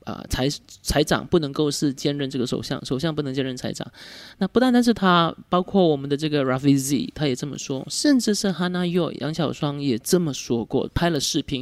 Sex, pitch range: male, 135-180 Hz